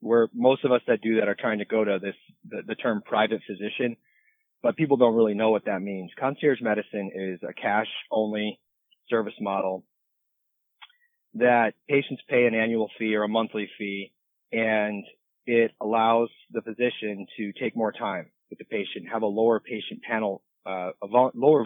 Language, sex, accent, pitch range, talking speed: English, male, American, 105-125 Hz, 170 wpm